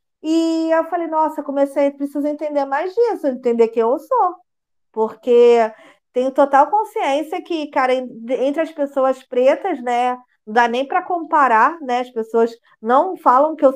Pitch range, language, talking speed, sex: 235-315 Hz, Portuguese, 155 wpm, female